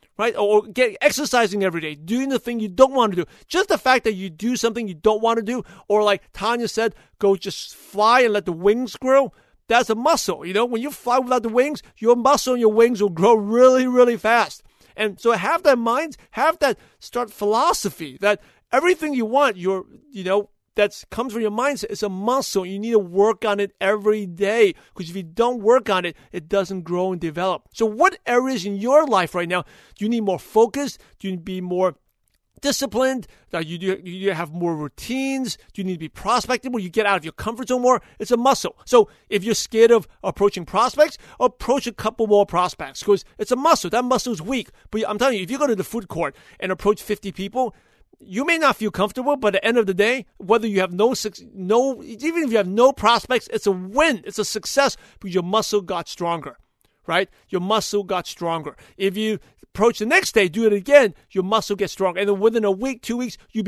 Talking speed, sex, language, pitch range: 230 wpm, male, English, 195-245 Hz